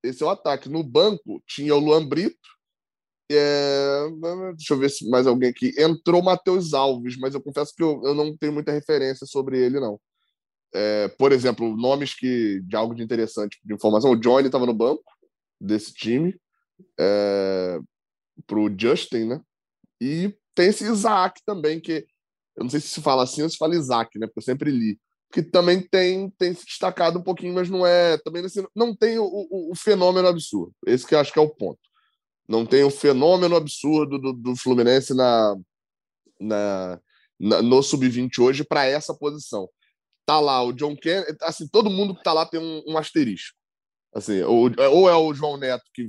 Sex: male